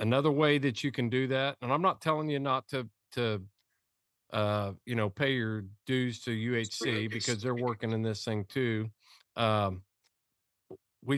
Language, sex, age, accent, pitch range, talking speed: English, male, 40-59, American, 110-140 Hz, 170 wpm